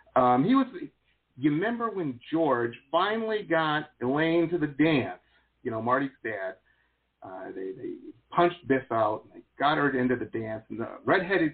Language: English